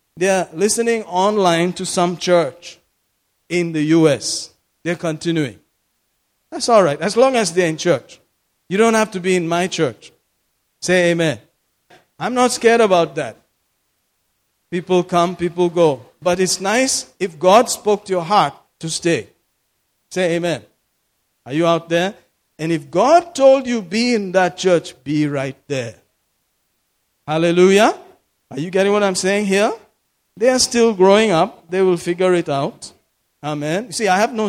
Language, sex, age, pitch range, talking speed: English, male, 50-69, 160-210 Hz, 160 wpm